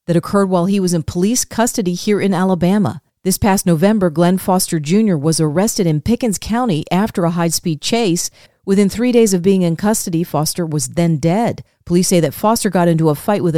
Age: 40-59